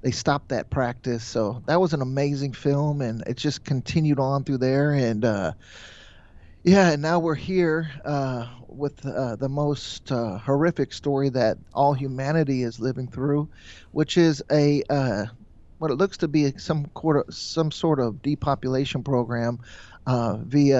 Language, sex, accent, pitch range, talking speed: English, male, American, 120-155 Hz, 160 wpm